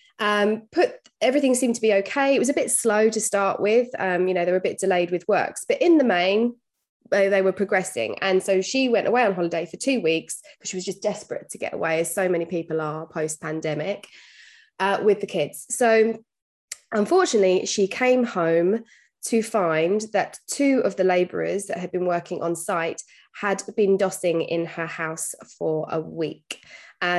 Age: 20-39